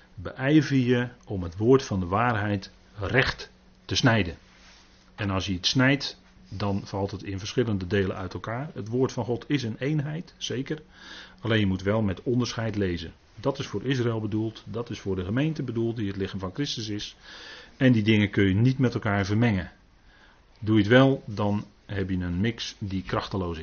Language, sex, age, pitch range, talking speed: Dutch, male, 40-59, 95-125 Hz, 195 wpm